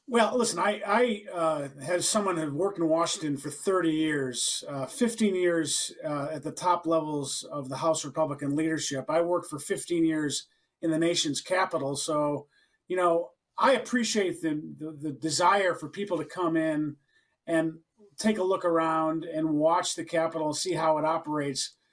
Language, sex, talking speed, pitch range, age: English, male, 180 wpm, 160-215 Hz, 40-59